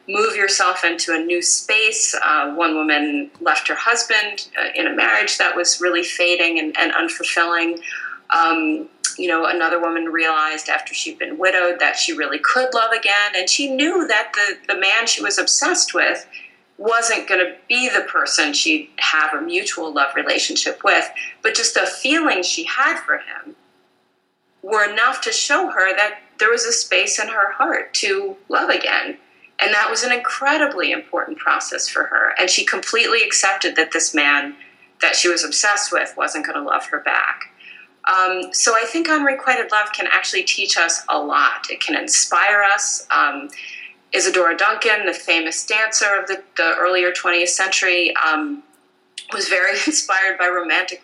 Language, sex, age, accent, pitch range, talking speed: English, female, 30-49, American, 170-285 Hz, 175 wpm